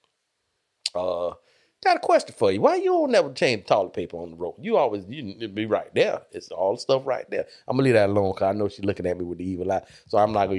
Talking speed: 285 wpm